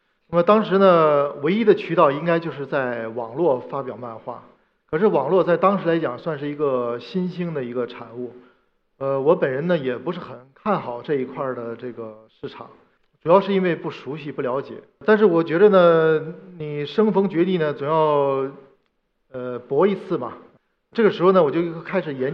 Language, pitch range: Chinese, 135-185 Hz